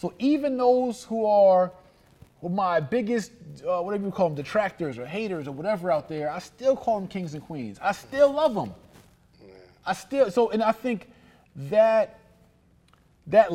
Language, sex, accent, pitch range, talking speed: English, male, American, 140-195 Hz, 175 wpm